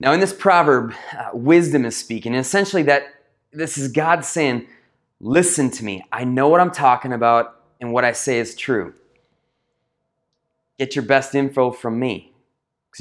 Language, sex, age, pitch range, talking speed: English, male, 30-49, 125-170 Hz, 170 wpm